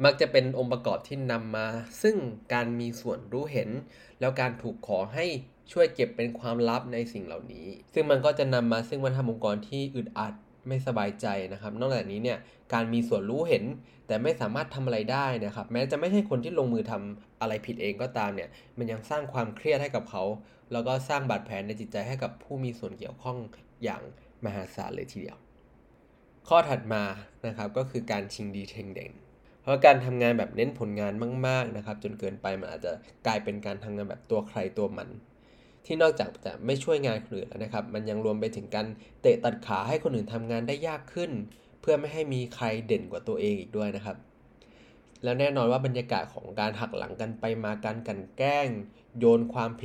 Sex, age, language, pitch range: male, 20-39, Thai, 105-130 Hz